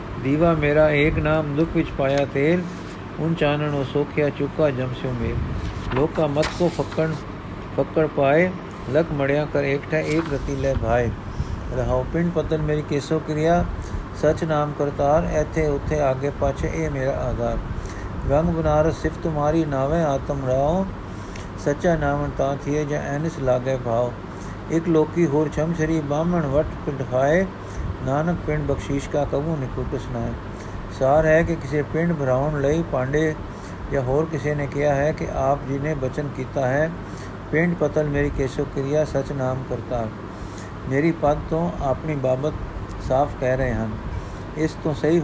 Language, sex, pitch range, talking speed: Punjabi, male, 125-155 Hz, 155 wpm